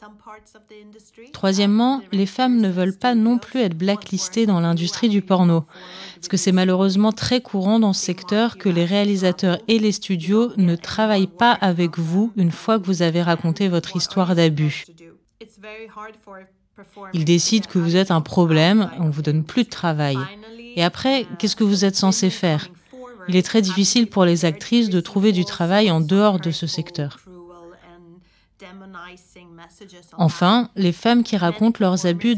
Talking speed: 165 wpm